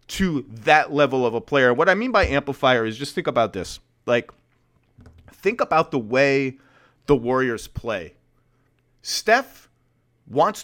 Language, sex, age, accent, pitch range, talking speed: English, male, 30-49, American, 125-150 Hz, 145 wpm